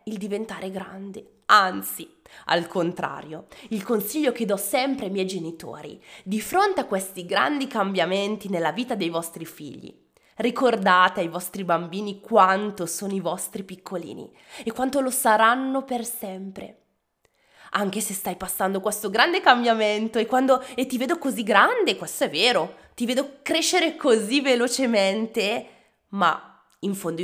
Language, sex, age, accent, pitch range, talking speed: Italian, female, 20-39, native, 185-240 Hz, 145 wpm